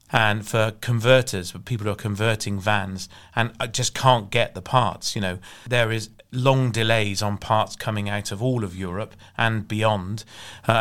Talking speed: 180 wpm